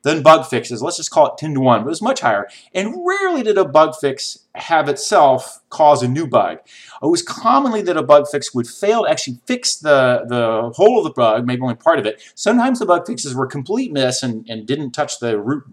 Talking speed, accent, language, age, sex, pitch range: 240 wpm, American, English, 30-49, male, 120-160 Hz